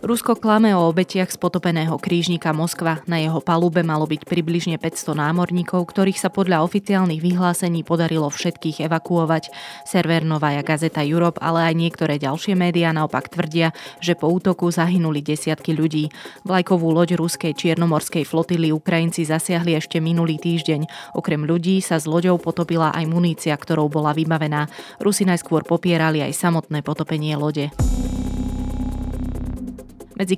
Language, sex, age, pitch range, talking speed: Slovak, female, 20-39, 155-175 Hz, 140 wpm